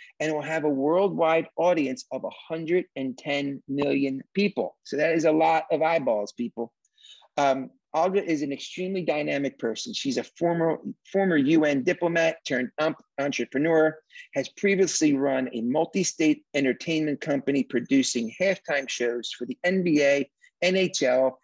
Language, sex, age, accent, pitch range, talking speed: English, male, 40-59, American, 135-180 Hz, 130 wpm